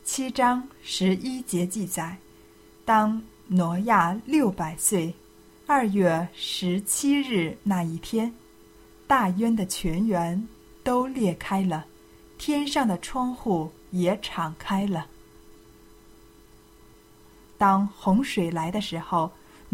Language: Chinese